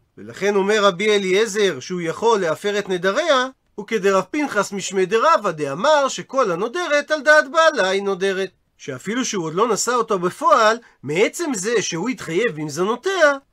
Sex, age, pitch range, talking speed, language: male, 40-59, 190-255 Hz, 140 wpm, Hebrew